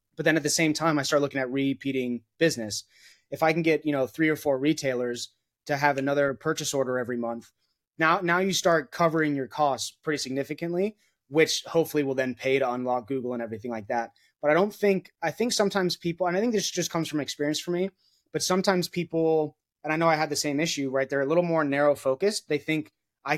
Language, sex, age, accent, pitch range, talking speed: Hindi, male, 20-39, American, 130-160 Hz, 230 wpm